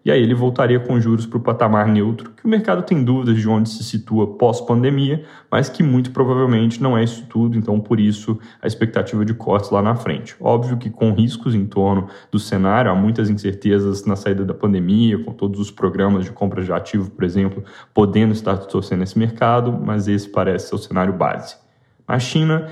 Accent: Brazilian